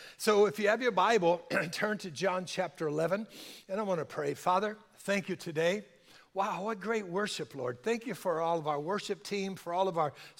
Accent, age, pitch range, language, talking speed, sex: American, 60-79, 165-200 Hz, English, 215 wpm, male